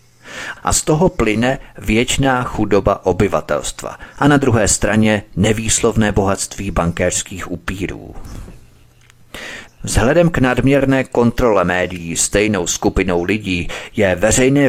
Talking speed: 100 wpm